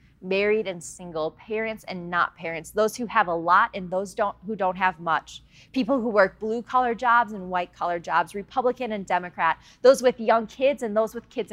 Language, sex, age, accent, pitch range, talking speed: English, female, 30-49, American, 180-235 Hz, 205 wpm